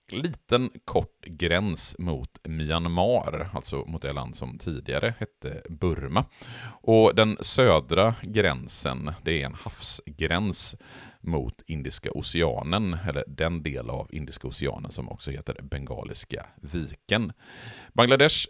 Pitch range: 70-100 Hz